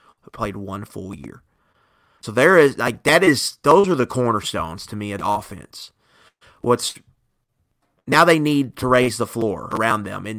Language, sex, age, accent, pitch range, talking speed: English, male, 30-49, American, 105-125 Hz, 170 wpm